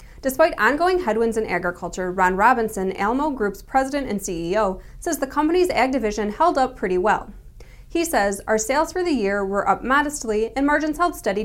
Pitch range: 200-275 Hz